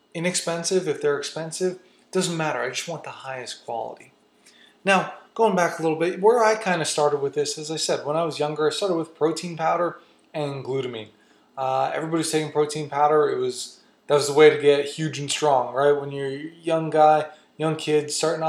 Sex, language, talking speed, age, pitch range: male, English, 210 wpm, 20-39, 140-175 Hz